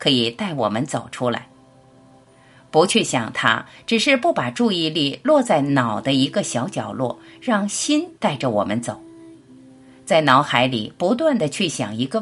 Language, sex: Chinese, female